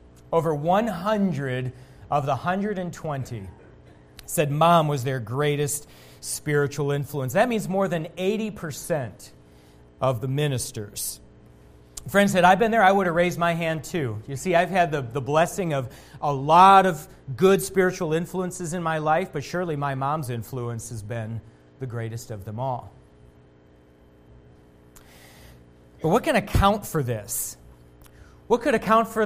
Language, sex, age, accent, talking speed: English, male, 40-59, American, 150 wpm